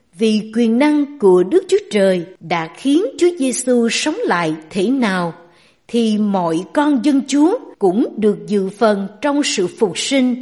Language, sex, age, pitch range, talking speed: Vietnamese, female, 60-79, 205-280 Hz, 160 wpm